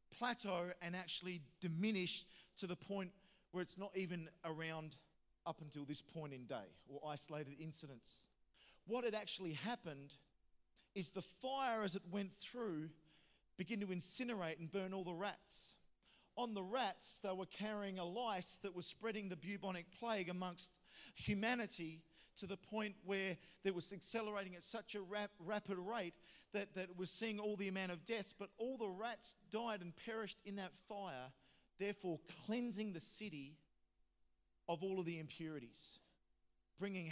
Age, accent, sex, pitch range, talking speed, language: 40-59, Australian, male, 160-200 Hz, 160 wpm, English